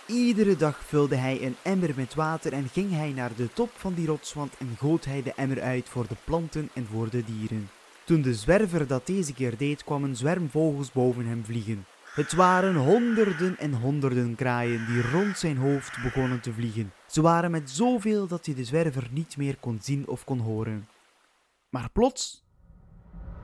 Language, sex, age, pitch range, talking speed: Dutch, male, 20-39, 125-170 Hz, 185 wpm